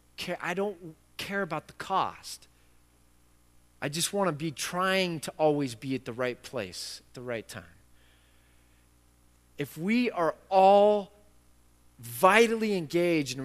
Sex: male